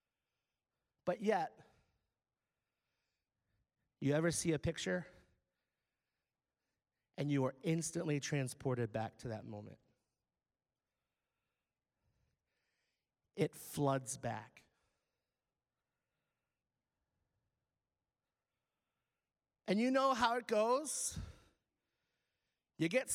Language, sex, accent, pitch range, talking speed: English, male, American, 125-215 Hz, 70 wpm